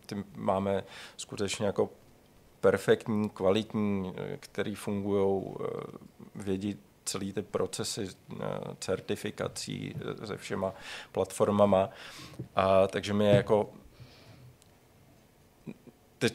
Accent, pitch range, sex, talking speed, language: native, 95-110 Hz, male, 75 wpm, Czech